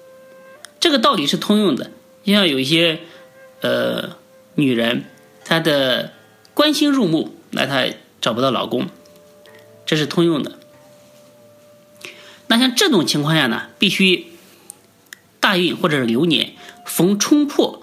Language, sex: Chinese, male